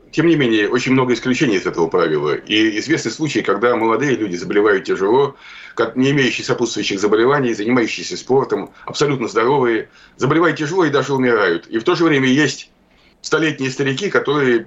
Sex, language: male, Russian